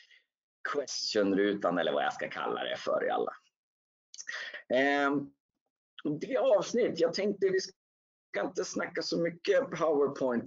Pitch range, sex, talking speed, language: 120-185 Hz, male, 120 wpm, Swedish